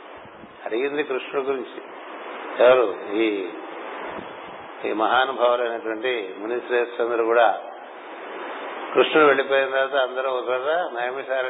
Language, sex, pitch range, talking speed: Telugu, male, 115-130 Hz, 85 wpm